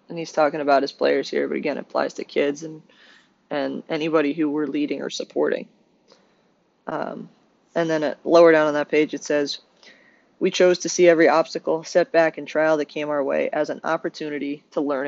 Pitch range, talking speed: 150-175 Hz, 200 wpm